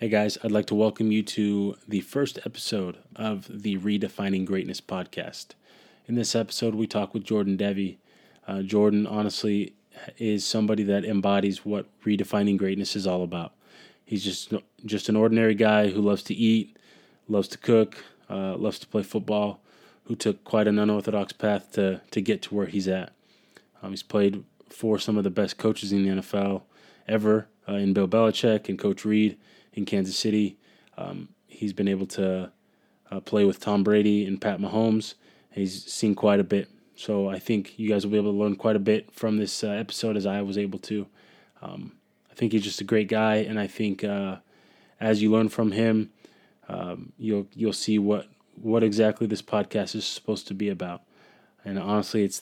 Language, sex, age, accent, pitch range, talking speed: English, male, 20-39, American, 100-110 Hz, 190 wpm